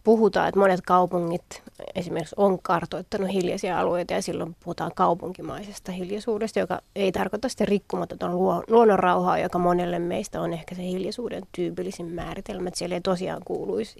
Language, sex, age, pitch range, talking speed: Finnish, female, 30-49, 175-205 Hz, 145 wpm